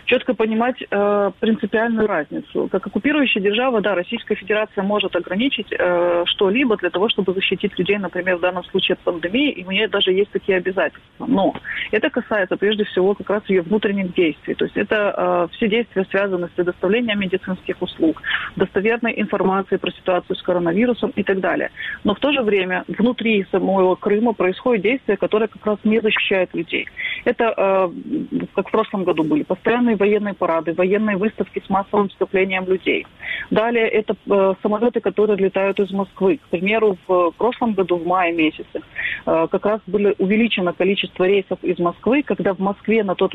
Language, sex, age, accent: Russian, female, 30-49, native